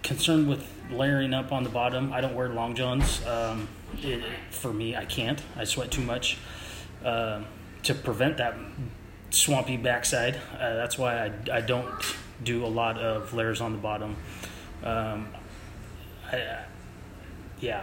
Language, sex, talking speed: English, male, 150 wpm